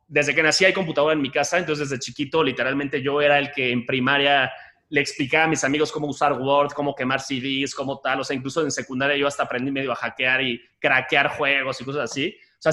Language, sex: Spanish, male